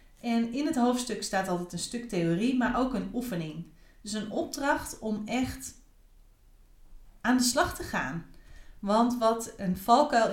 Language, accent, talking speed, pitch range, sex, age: Dutch, Dutch, 155 wpm, 190-235 Hz, female, 30-49